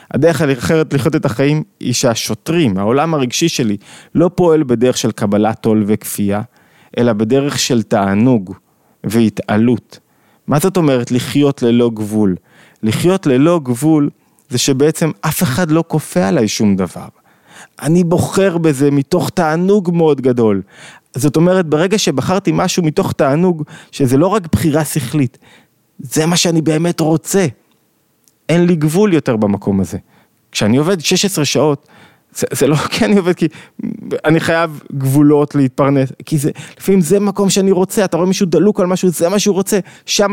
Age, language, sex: 20-39, Hebrew, male